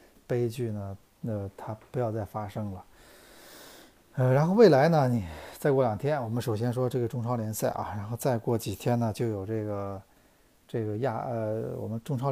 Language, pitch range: Chinese, 115-135 Hz